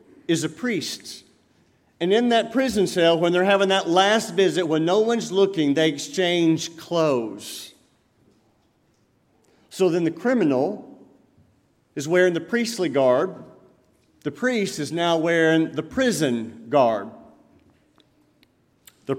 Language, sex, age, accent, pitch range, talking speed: English, male, 50-69, American, 150-215 Hz, 120 wpm